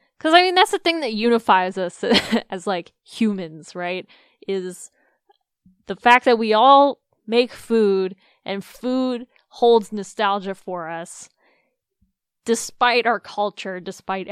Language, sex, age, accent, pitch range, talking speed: English, female, 10-29, American, 190-240 Hz, 130 wpm